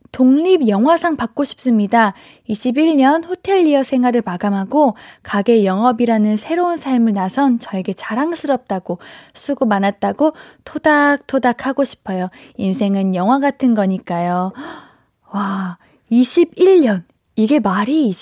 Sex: female